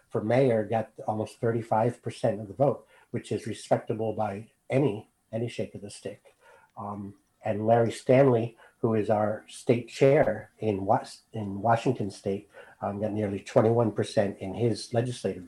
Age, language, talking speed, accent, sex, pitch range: 60-79, English, 150 wpm, American, male, 105-130 Hz